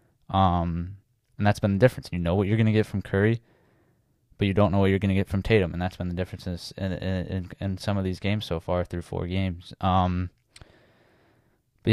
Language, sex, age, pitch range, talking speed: English, male, 10-29, 95-110 Hz, 230 wpm